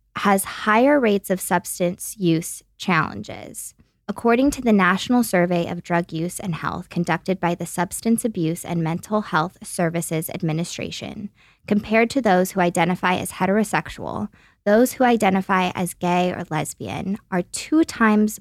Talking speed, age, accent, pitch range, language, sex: 145 wpm, 20-39, American, 165-215 Hz, English, female